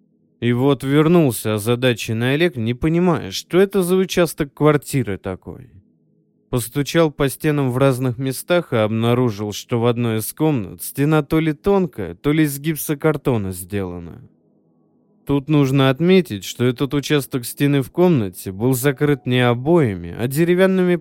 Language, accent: Russian, native